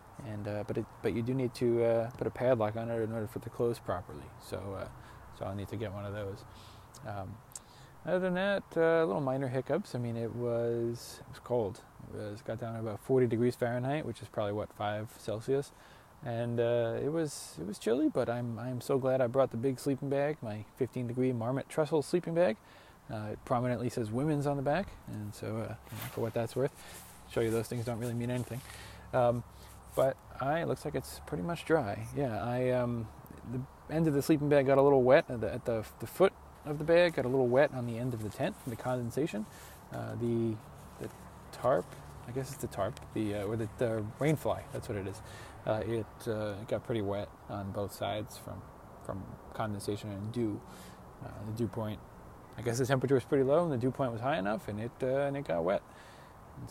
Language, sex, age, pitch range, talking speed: English, male, 20-39, 110-130 Hz, 225 wpm